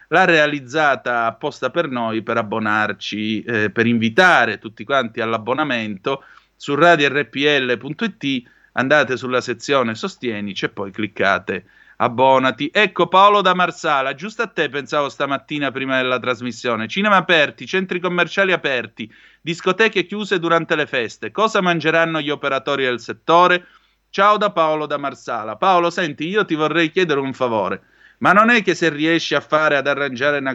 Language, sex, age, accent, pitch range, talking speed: Italian, male, 30-49, native, 130-170 Hz, 150 wpm